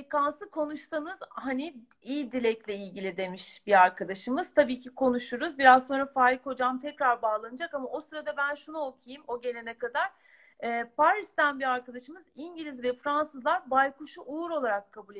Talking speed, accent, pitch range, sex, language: 150 wpm, native, 235-300 Hz, female, Turkish